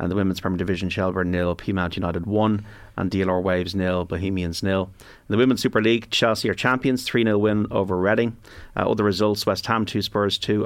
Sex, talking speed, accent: male, 210 wpm, Irish